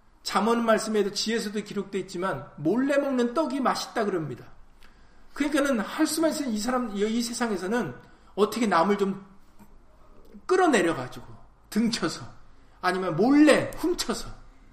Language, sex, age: Korean, male, 40-59